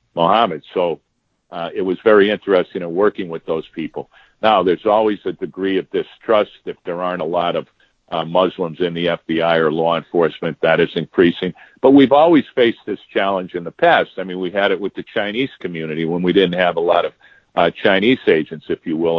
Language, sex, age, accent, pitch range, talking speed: English, male, 50-69, American, 85-100 Hz, 210 wpm